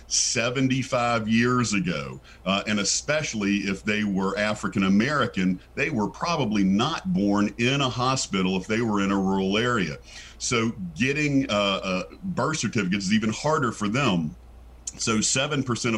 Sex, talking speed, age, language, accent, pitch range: male, 145 wpm, 50-69, English, American, 100-135 Hz